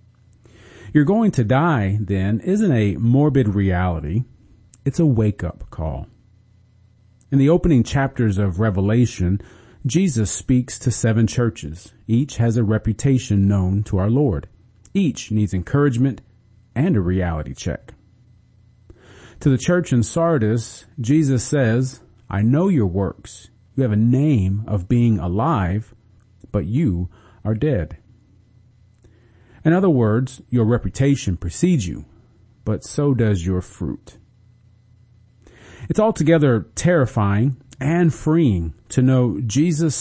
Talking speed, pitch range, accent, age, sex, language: 125 wpm, 100-125 Hz, American, 40-59, male, English